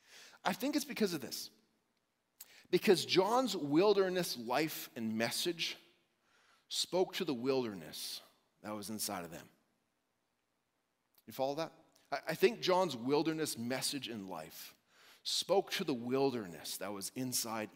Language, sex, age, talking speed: English, male, 40-59, 130 wpm